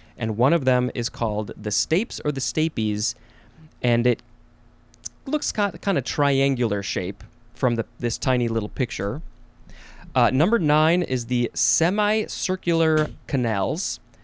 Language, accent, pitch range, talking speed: English, American, 115-155 Hz, 130 wpm